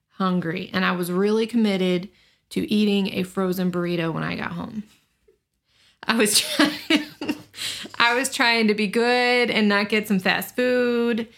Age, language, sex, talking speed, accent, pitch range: 30-49, English, female, 160 wpm, American, 180-210 Hz